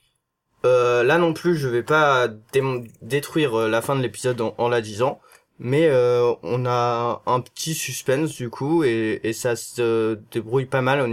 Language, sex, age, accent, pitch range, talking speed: French, male, 20-39, French, 120-155 Hz, 190 wpm